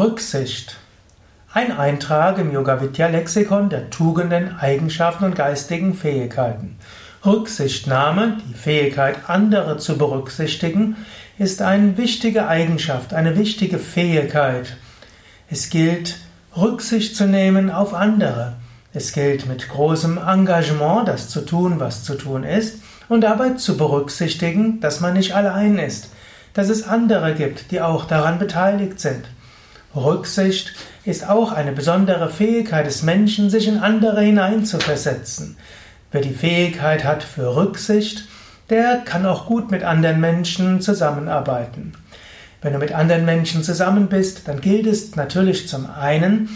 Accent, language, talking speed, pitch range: German, German, 130 wpm, 145-195 Hz